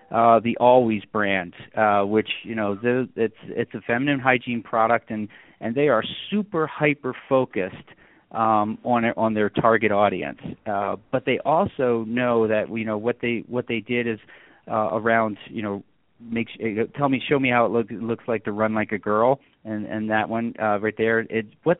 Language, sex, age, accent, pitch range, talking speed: English, male, 40-59, American, 110-130 Hz, 200 wpm